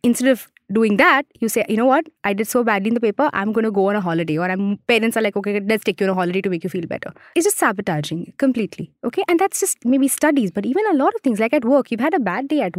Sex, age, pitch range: female, 20-39, 215-300 Hz